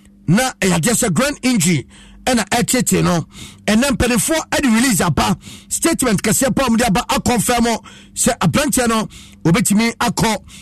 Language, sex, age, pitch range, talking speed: English, male, 50-69, 170-230 Hz, 190 wpm